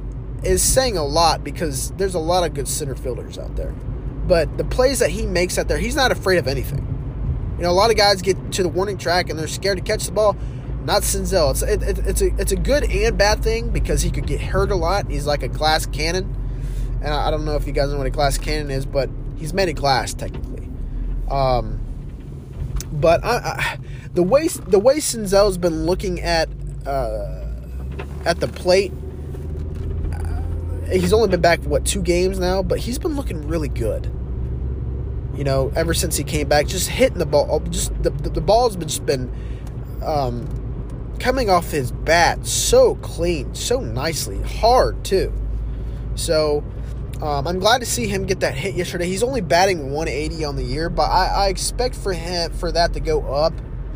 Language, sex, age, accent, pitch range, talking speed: English, male, 20-39, American, 125-175 Hz, 200 wpm